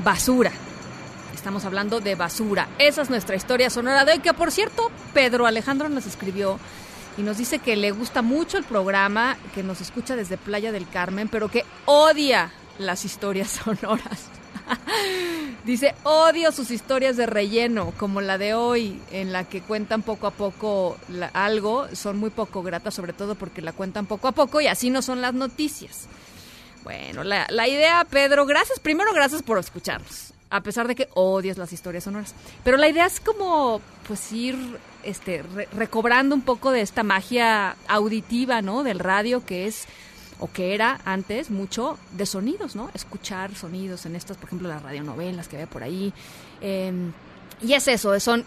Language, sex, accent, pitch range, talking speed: Spanish, female, Mexican, 195-255 Hz, 175 wpm